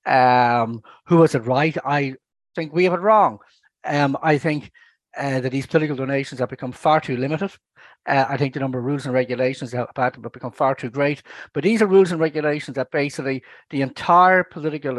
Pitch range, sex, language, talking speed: 125-155 Hz, male, English, 205 wpm